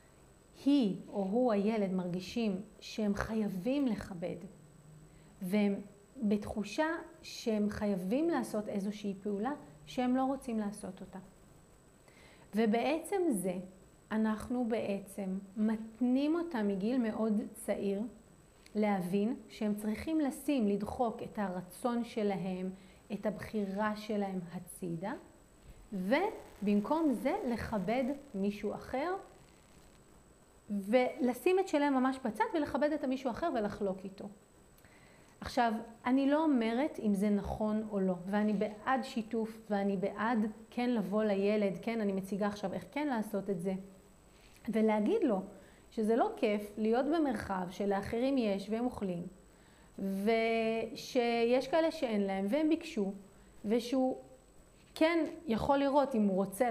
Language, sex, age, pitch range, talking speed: Hebrew, female, 40-59, 200-250 Hz, 110 wpm